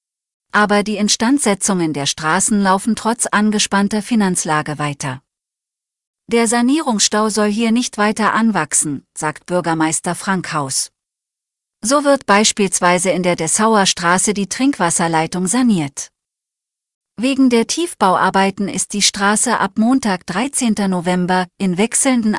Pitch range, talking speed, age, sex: 175-225 Hz, 115 wpm, 40-59, female